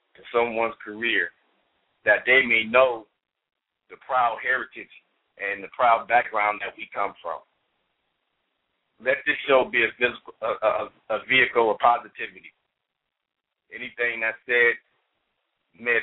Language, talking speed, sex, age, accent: English, 125 wpm, male, 50-69, American